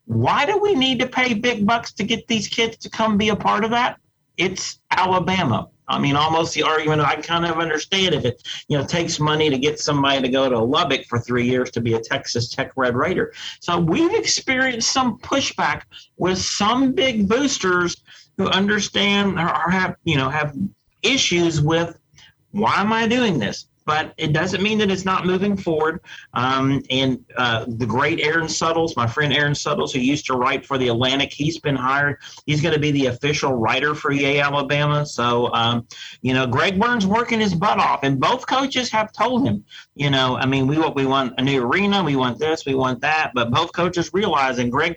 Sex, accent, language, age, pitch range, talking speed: male, American, English, 40-59, 135-195 Hz, 210 wpm